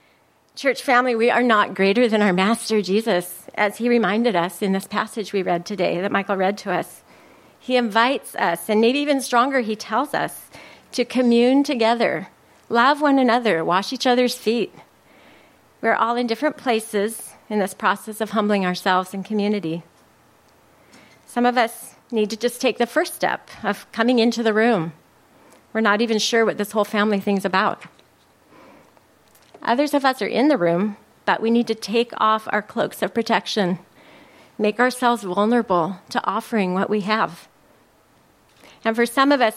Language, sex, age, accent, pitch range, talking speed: English, female, 40-59, American, 205-245 Hz, 175 wpm